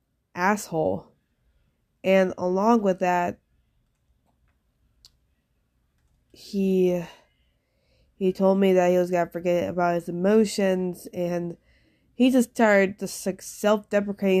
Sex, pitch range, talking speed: female, 185-210 Hz, 105 wpm